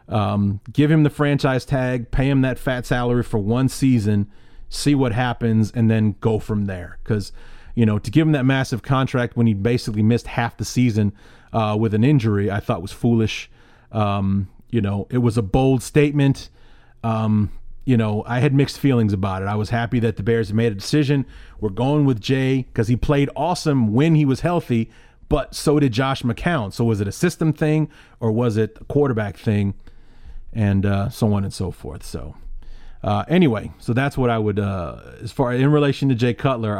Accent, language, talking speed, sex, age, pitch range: American, English, 200 wpm, male, 30-49, 105-140 Hz